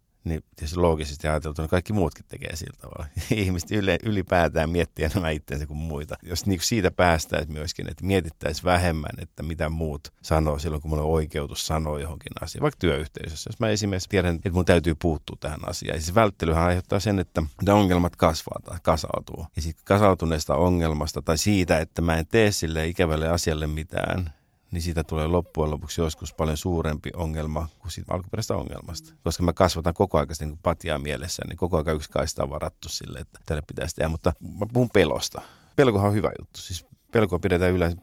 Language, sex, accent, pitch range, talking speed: Finnish, male, native, 80-95 Hz, 195 wpm